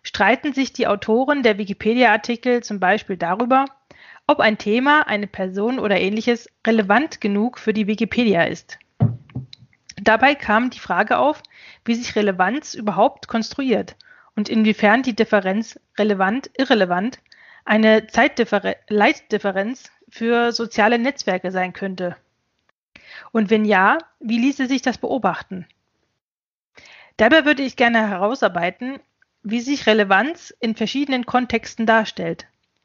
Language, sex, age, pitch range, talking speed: German, female, 30-49, 205-250 Hz, 115 wpm